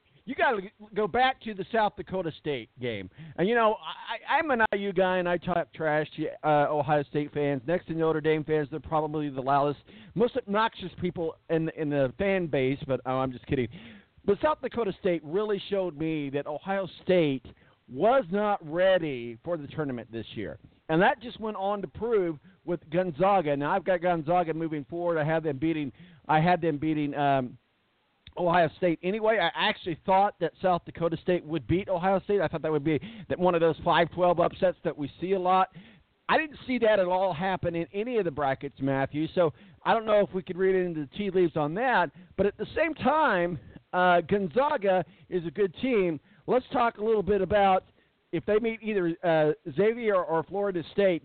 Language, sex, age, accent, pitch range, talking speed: English, male, 50-69, American, 155-195 Hz, 205 wpm